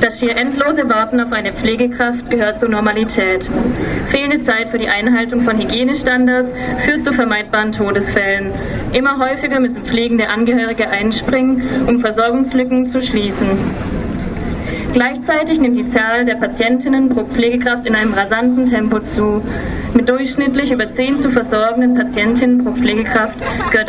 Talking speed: 135 wpm